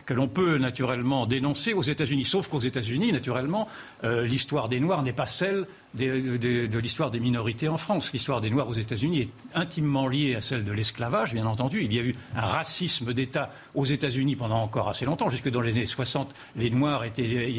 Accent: French